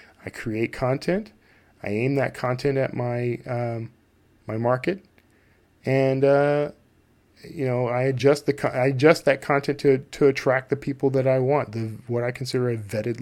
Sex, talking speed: male, 170 wpm